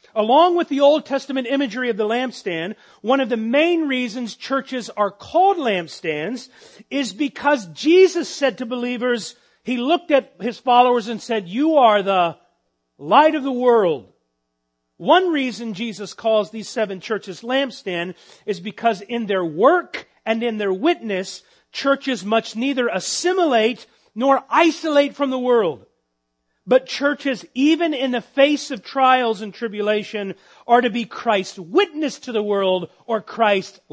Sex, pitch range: male, 200-270 Hz